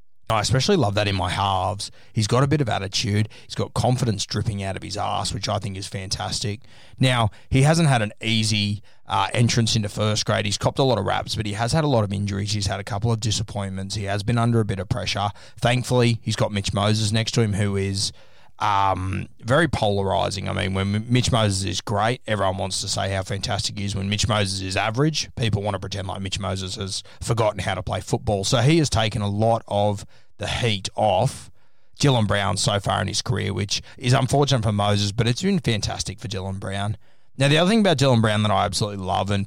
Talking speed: 230 wpm